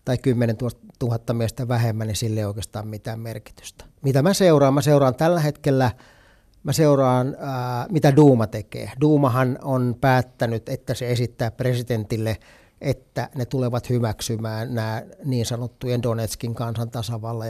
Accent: native